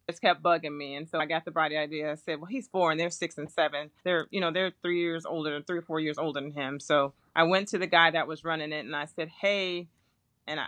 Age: 30-49